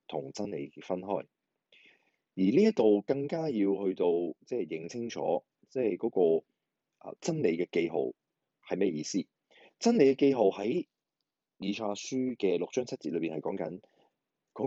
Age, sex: 30-49, male